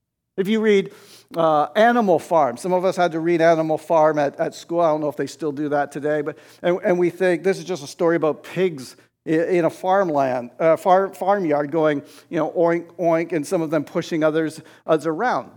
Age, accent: 50-69, American